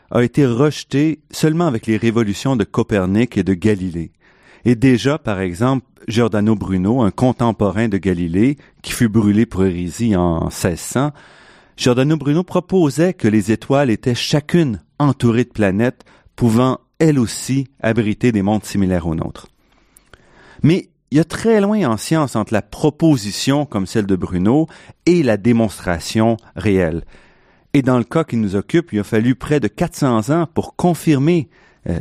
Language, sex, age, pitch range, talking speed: French, male, 40-59, 105-150 Hz, 160 wpm